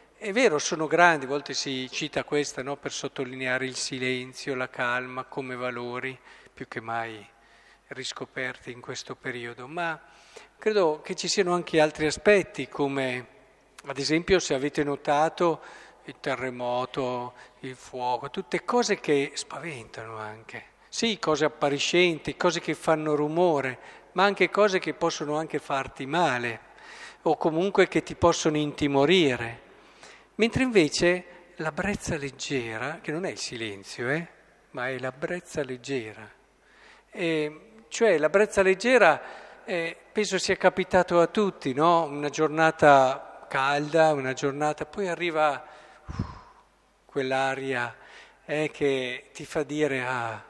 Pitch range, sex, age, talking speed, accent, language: 130-170 Hz, male, 50-69, 135 wpm, native, Italian